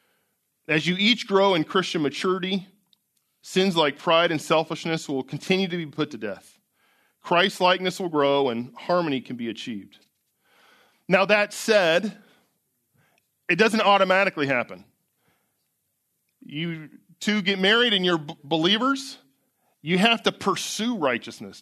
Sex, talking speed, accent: male, 130 wpm, American